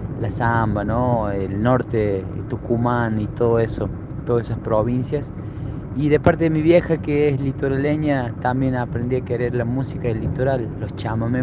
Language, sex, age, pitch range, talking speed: Spanish, male, 20-39, 120-145 Hz, 165 wpm